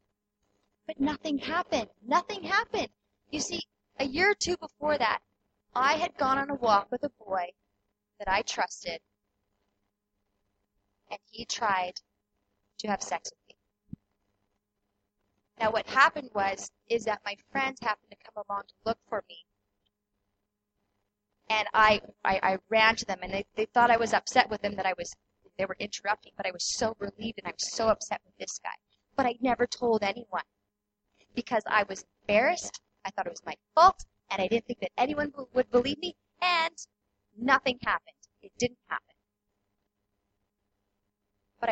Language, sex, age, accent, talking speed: English, female, 30-49, American, 165 wpm